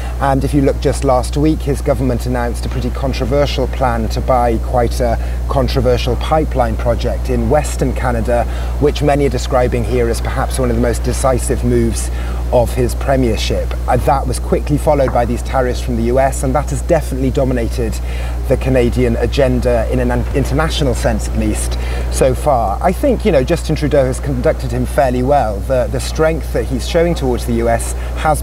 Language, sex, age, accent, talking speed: English, male, 30-49, British, 185 wpm